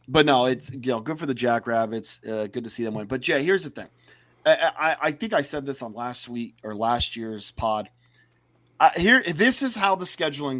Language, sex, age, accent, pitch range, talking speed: English, male, 30-49, American, 110-145 Hz, 230 wpm